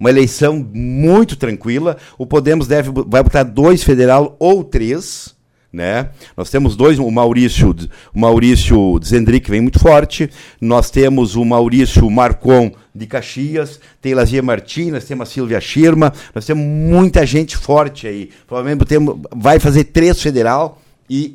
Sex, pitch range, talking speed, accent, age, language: male, 130-160 Hz, 145 wpm, Brazilian, 60-79, Portuguese